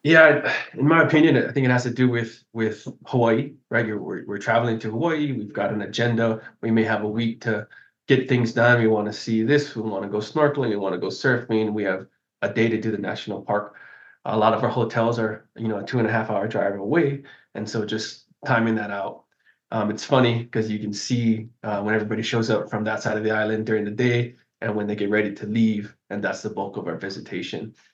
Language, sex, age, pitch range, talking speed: English, male, 20-39, 105-120 Hz, 245 wpm